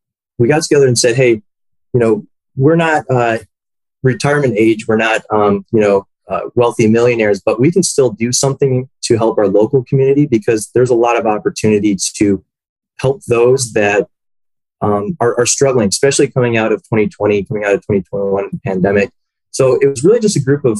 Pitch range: 105-130 Hz